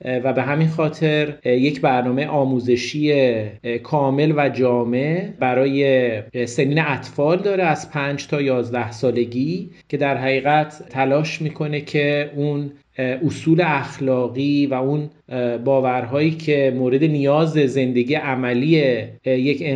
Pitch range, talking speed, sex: 125-150 Hz, 110 wpm, male